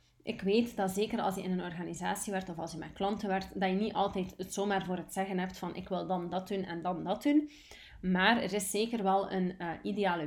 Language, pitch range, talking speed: Dutch, 185-210 Hz, 255 wpm